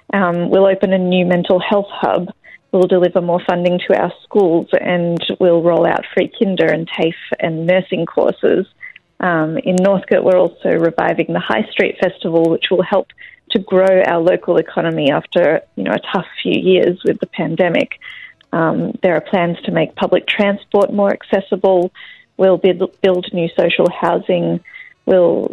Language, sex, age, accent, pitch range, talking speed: Greek, female, 30-49, Australian, 170-200 Hz, 165 wpm